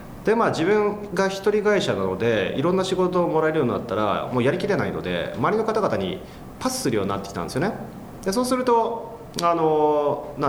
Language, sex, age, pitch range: Japanese, male, 30-49, 120-185 Hz